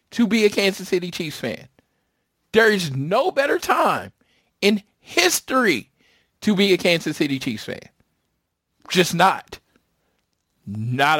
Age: 40-59